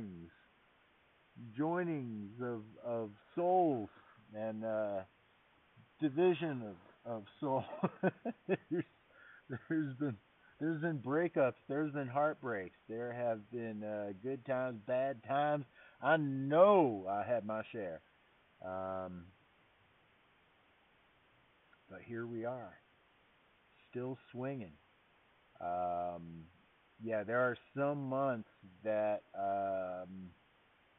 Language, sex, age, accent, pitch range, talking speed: English, male, 50-69, American, 80-125 Hz, 95 wpm